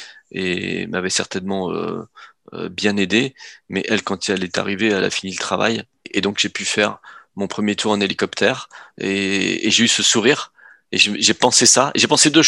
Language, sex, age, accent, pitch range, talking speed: French, male, 30-49, French, 100-125 Hz, 205 wpm